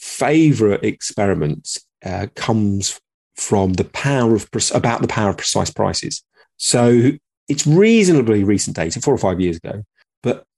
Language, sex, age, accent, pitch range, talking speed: English, male, 30-49, British, 100-130 Hz, 145 wpm